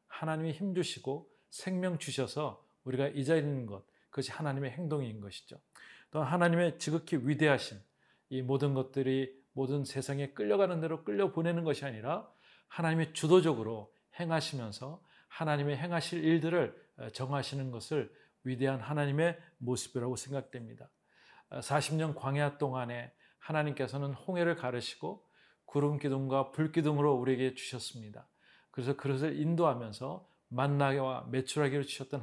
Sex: male